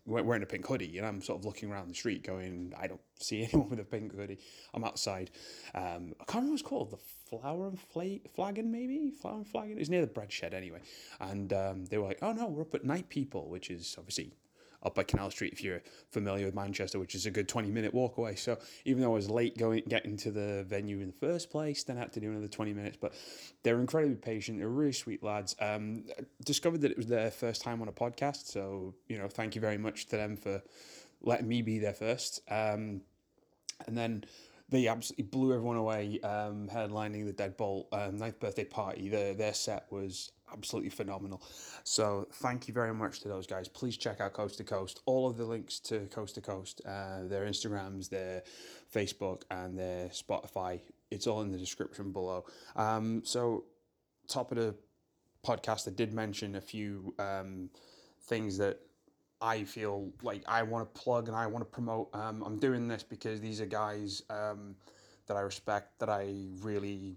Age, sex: 20-39, male